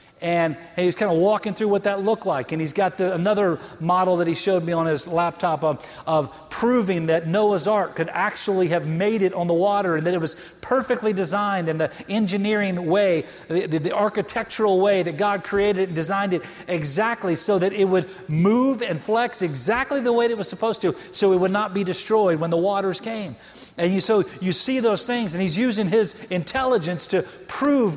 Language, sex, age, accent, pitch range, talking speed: English, male, 40-59, American, 165-215 Hz, 210 wpm